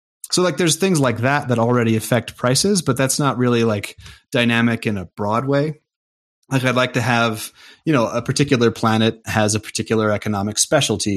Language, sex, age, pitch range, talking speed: English, male, 30-49, 105-120 Hz, 190 wpm